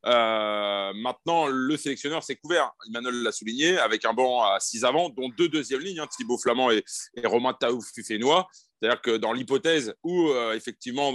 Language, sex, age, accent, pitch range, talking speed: French, male, 30-49, French, 115-155 Hz, 180 wpm